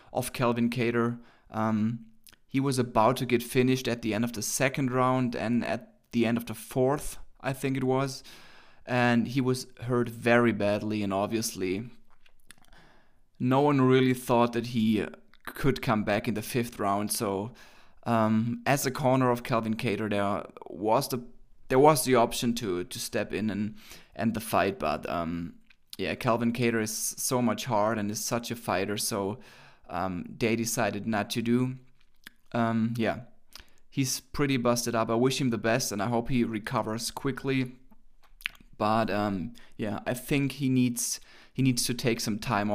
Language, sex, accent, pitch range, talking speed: English, male, German, 110-130 Hz, 175 wpm